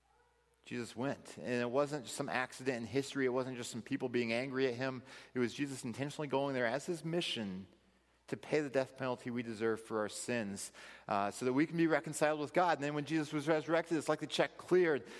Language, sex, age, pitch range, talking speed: Italian, male, 40-59, 115-155 Hz, 230 wpm